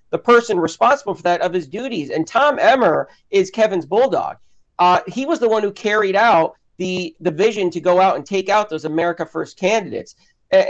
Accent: American